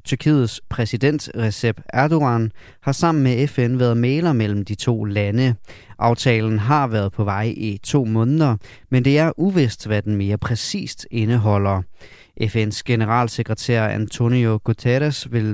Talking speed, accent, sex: 140 wpm, native, male